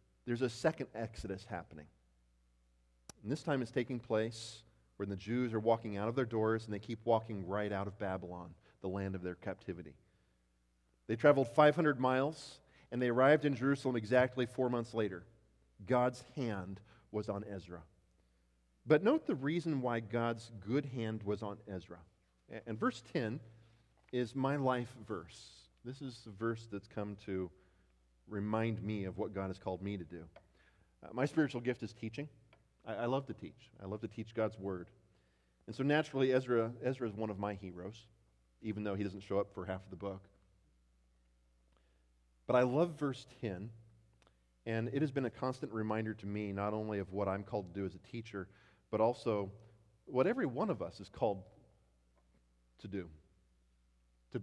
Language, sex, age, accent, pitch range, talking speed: English, male, 40-59, American, 95-120 Hz, 180 wpm